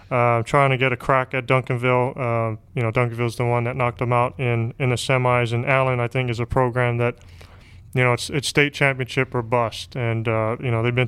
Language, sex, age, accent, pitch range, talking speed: English, male, 20-39, American, 120-135 Hz, 240 wpm